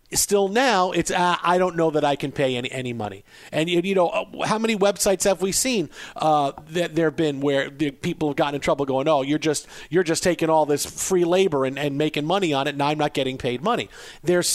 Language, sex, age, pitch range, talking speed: English, male, 40-59, 145-185 Hz, 245 wpm